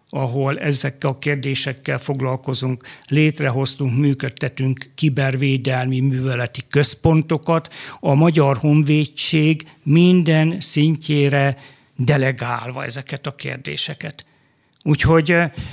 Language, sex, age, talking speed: Hungarian, male, 60-79, 75 wpm